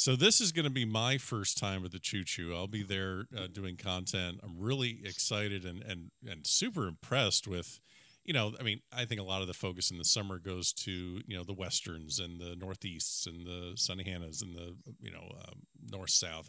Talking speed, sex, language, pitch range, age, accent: 220 wpm, male, English, 90-120 Hz, 40-59, American